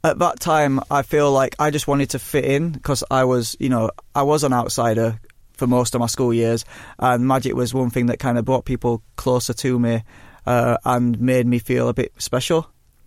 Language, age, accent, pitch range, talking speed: English, 20-39, British, 120-135 Hz, 220 wpm